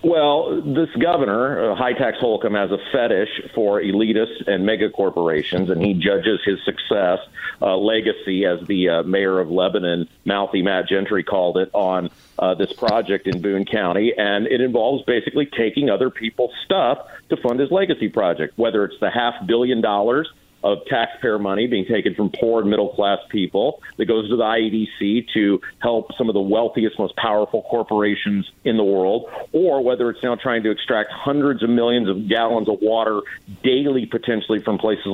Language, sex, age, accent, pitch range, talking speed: English, male, 50-69, American, 100-125 Hz, 180 wpm